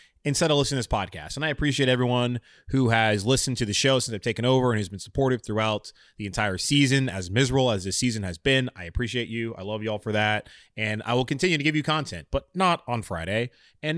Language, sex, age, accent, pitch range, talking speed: English, male, 20-39, American, 105-135 Hz, 250 wpm